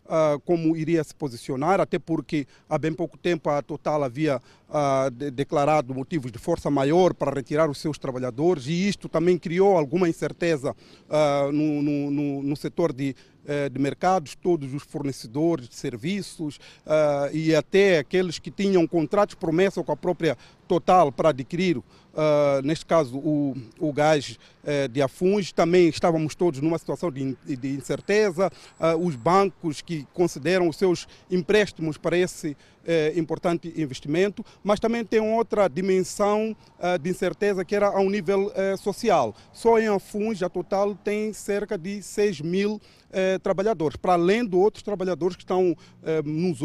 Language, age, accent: Portuguese, 40-59, Brazilian